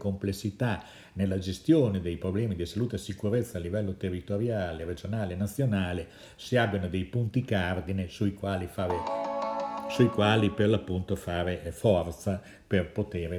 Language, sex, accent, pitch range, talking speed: Italian, male, native, 90-115 Hz, 140 wpm